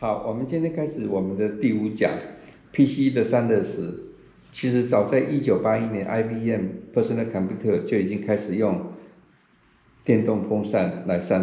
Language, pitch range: Chinese, 100-125 Hz